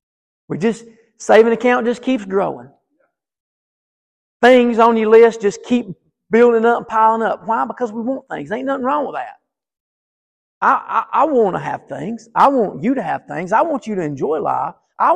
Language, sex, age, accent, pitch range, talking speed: English, male, 40-59, American, 160-230 Hz, 195 wpm